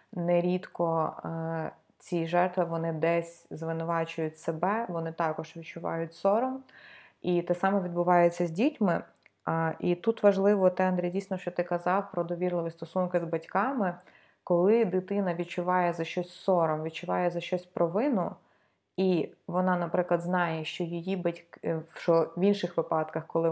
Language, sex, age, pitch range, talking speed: Ukrainian, female, 20-39, 165-185 Hz, 140 wpm